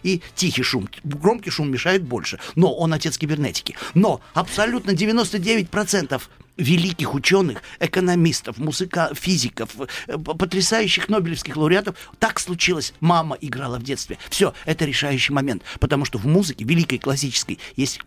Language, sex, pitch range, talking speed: Russian, male, 140-190 Hz, 130 wpm